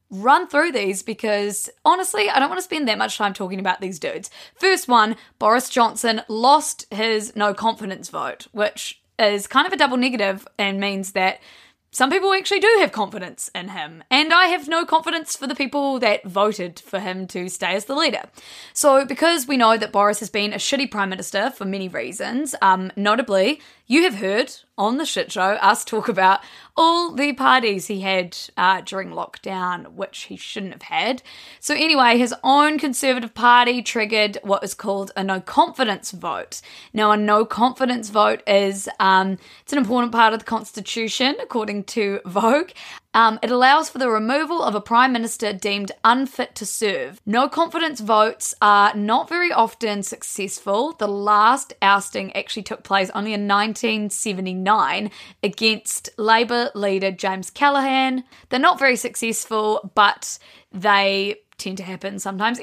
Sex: female